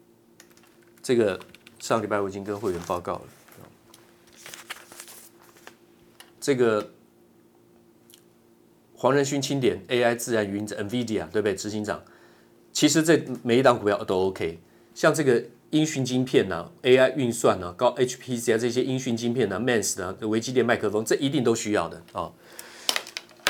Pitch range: 115-135 Hz